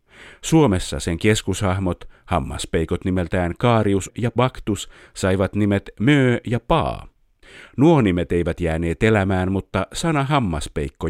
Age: 50-69